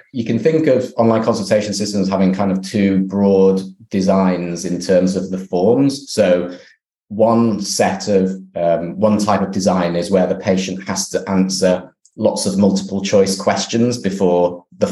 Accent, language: British, English